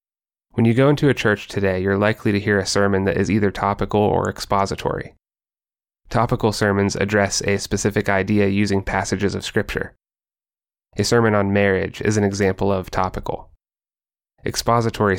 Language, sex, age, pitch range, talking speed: English, male, 20-39, 95-105 Hz, 155 wpm